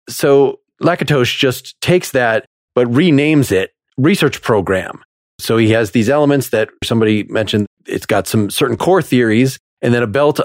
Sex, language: male, English